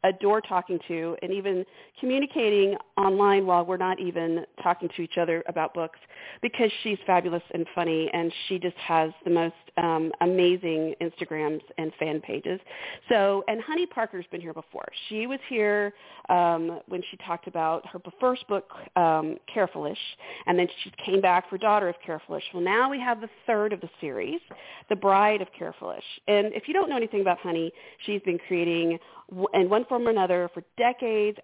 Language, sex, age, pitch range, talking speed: English, female, 40-59, 170-210 Hz, 180 wpm